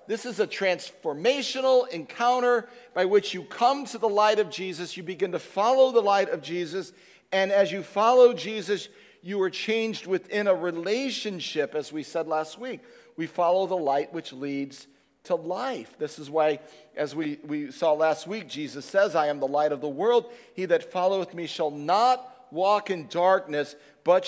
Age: 50-69